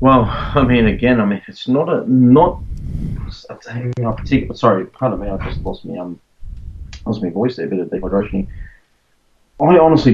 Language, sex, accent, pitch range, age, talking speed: English, male, Australian, 95-120 Hz, 20-39, 170 wpm